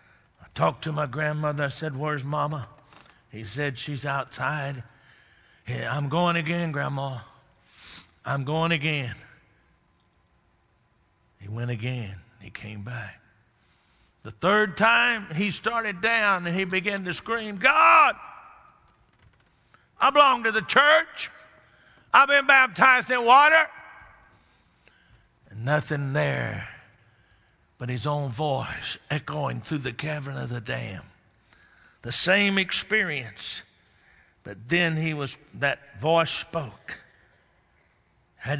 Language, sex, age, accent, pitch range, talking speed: English, male, 50-69, American, 130-185 Hz, 115 wpm